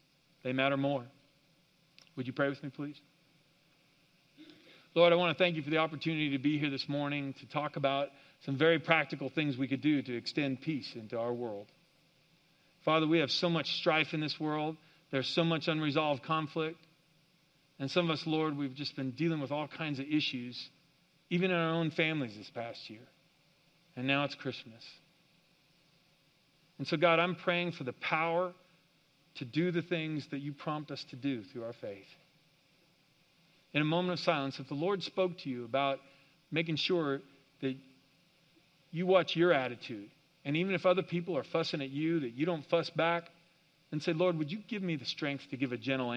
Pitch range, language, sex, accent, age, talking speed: 140-170 Hz, English, male, American, 40-59, 190 wpm